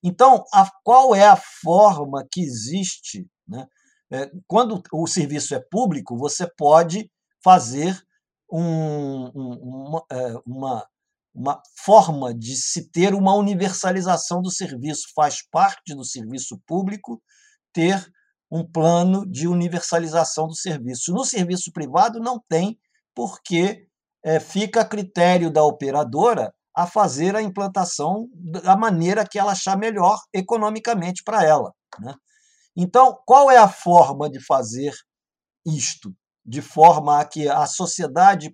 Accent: Brazilian